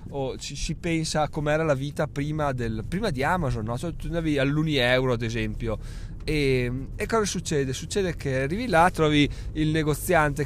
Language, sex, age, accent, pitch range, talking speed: Italian, male, 20-39, native, 125-155 Hz, 165 wpm